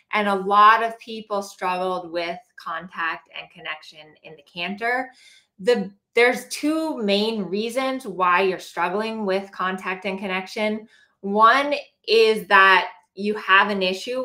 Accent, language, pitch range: American, English, 180-220 Hz